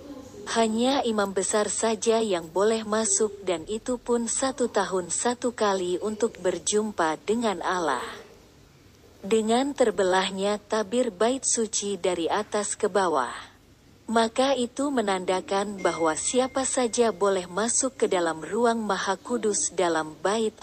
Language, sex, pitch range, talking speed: Indonesian, female, 185-230 Hz, 120 wpm